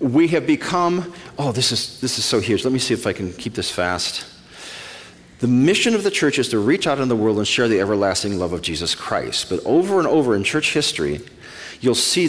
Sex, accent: male, American